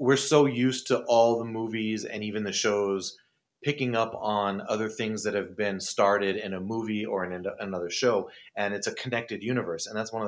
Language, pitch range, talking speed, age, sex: English, 100-120 Hz, 210 wpm, 30-49, male